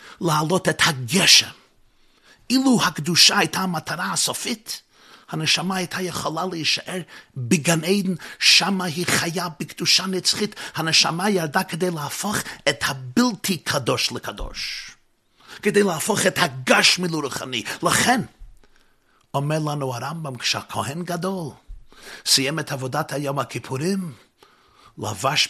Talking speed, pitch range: 105 wpm, 145-195 Hz